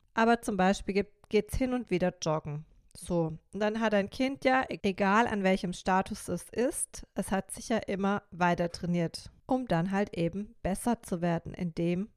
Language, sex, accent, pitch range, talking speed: German, female, German, 185-235 Hz, 185 wpm